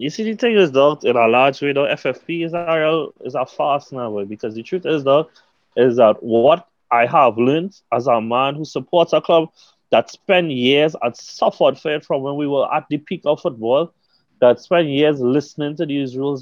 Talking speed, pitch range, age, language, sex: 215 wpm, 140-190 Hz, 20-39, English, male